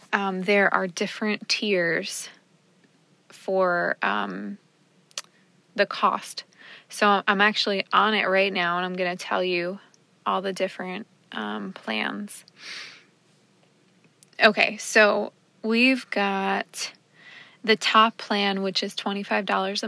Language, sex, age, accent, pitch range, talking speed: English, female, 20-39, American, 180-210 Hz, 110 wpm